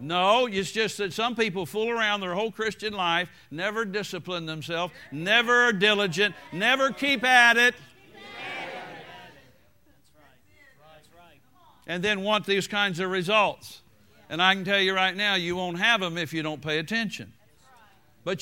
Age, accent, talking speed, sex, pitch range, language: 60-79, American, 150 wpm, male, 160-205 Hz, English